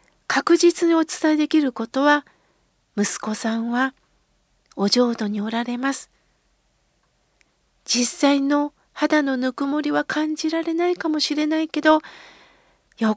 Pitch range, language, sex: 260-325 Hz, Japanese, female